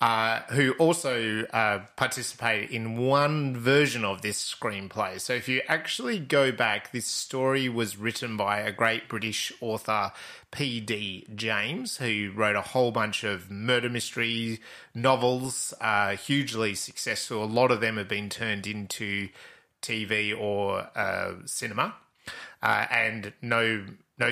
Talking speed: 140 wpm